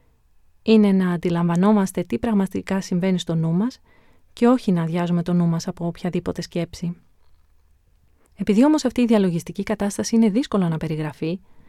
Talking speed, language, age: 150 wpm, Greek, 30-49